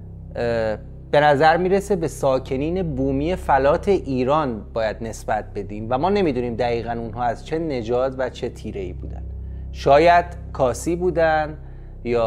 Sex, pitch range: male, 110-155 Hz